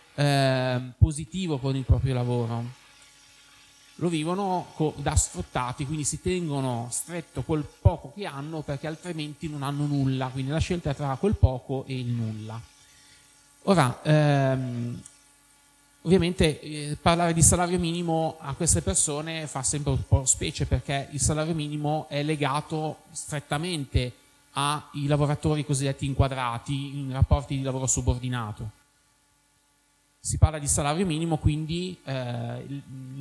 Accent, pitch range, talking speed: native, 130-155 Hz, 130 wpm